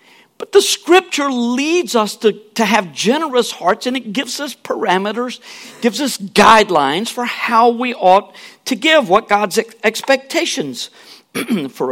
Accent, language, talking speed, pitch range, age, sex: American, English, 140 wpm, 205-265 Hz, 50-69, male